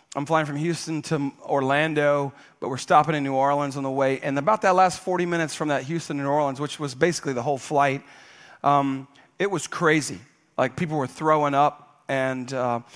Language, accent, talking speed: English, American, 200 wpm